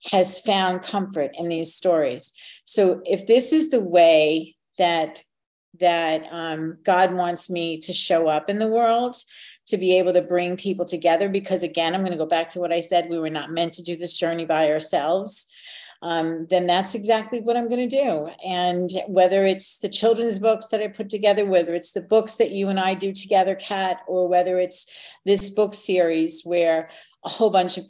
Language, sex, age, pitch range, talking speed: English, female, 50-69, 170-210 Hz, 195 wpm